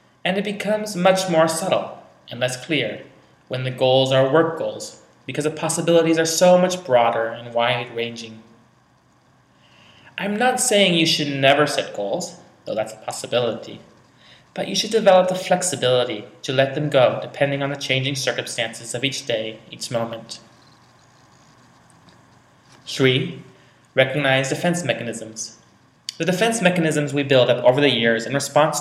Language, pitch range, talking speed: English, 120-165 Hz, 150 wpm